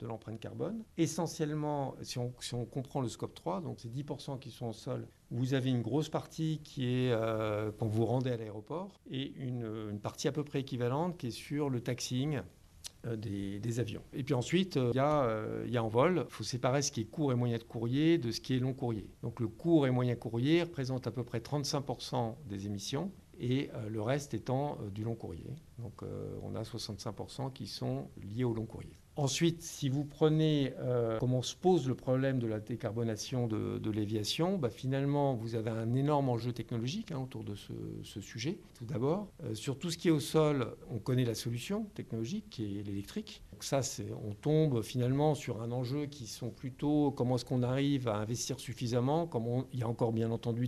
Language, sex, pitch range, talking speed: French, male, 115-140 Hz, 215 wpm